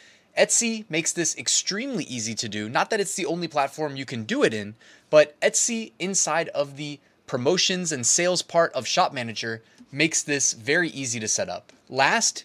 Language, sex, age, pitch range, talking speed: English, male, 20-39, 140-200 Hz, 185 wpm